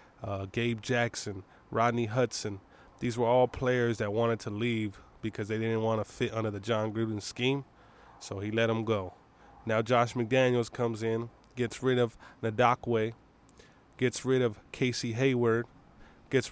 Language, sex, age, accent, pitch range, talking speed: English, male, 20-39, American, 110-125 Hz, 160 wpm